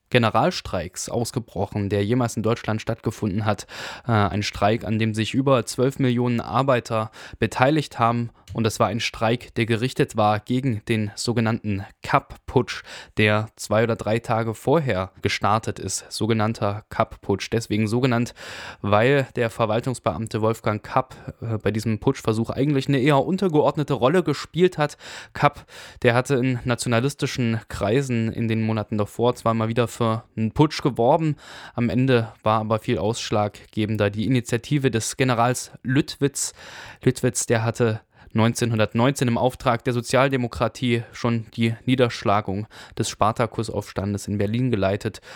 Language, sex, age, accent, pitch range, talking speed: German, male, 10-29, German, 110-125 Hz, 140 wpm